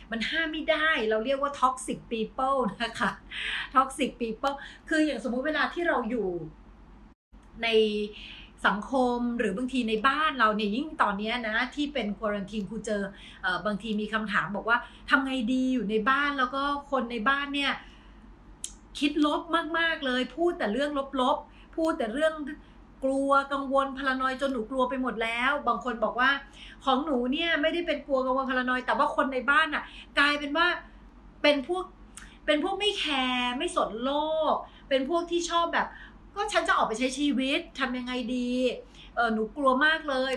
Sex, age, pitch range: female, 30-49, 235-295 Hz